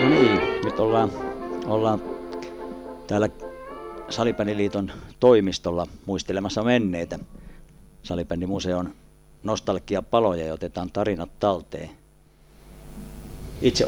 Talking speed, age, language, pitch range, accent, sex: 80 wpm, 50-69, Finnish, 85-100 Hz, native, male